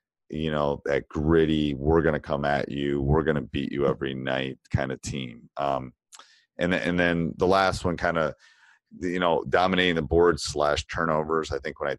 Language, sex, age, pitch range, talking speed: English, male, 30-49, 70-80 Hz, 200 wpm